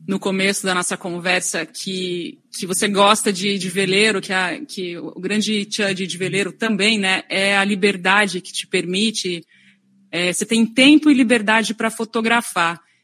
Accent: Brazilian